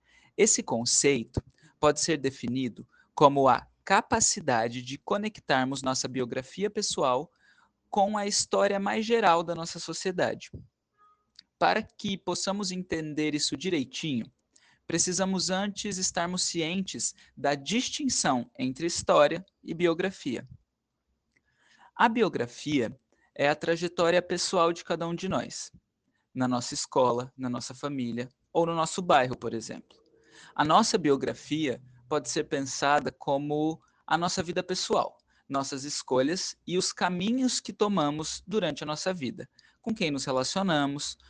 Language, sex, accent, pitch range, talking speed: Portuguese, male, Brazilian, 135-190 Hz, 125 wpm